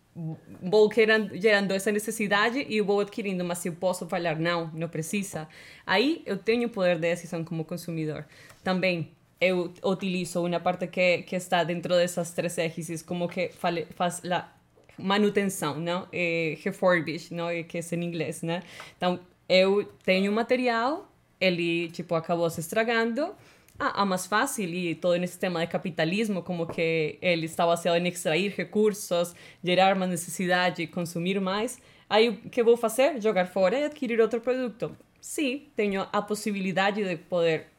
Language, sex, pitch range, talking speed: Portuguese, female, 170-205 Hz, 160 wpm